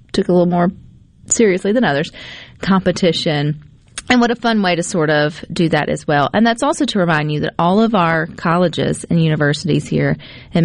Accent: American